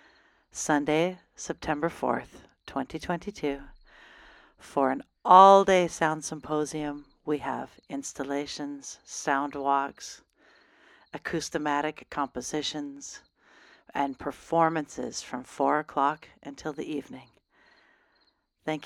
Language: English